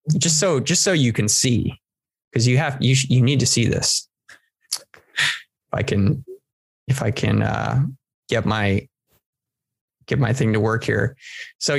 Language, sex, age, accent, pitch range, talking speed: English, male, 20-39, American, 115-135 Hz, 170 wpm